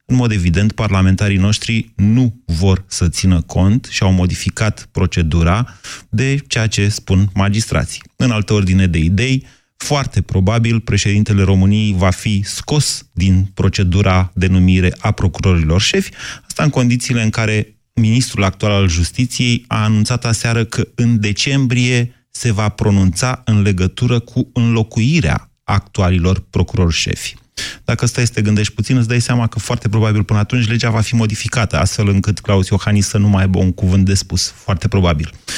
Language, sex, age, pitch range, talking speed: Romanian, male, 30-49, 95-120 Hz, 160 wpm